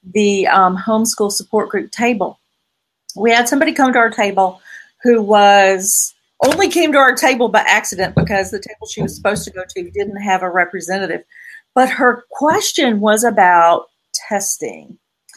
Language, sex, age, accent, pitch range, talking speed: English, female, 40-59, American, 200-260 Hz, 160 wpm